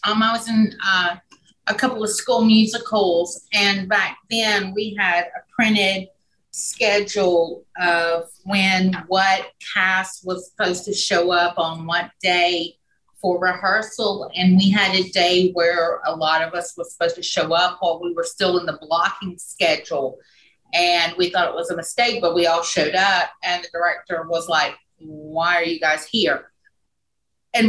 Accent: American